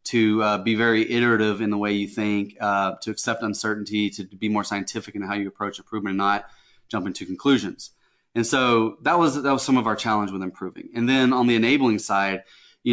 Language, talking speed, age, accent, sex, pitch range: English, 220 wpm, 20-39, American, male, 105-120 Hz